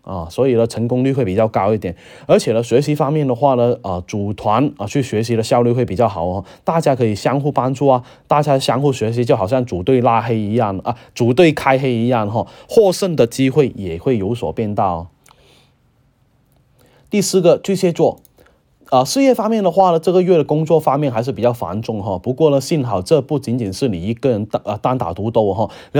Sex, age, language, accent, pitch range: male, 20-39, Chinese, native, 115-145 Hz